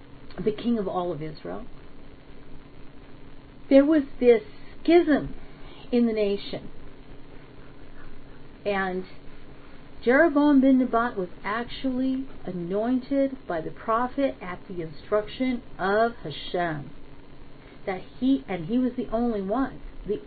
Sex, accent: female, American